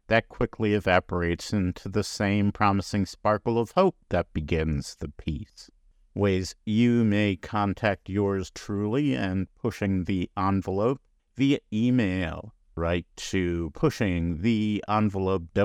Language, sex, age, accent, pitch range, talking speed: English, male, 50-69, American, 90-110 Hz, 120 wpm